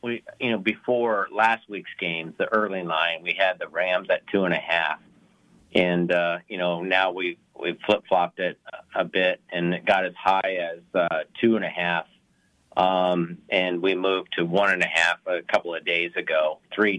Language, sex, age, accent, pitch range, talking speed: English, male, 50-69, American, 95-125 Hz, 180 wpm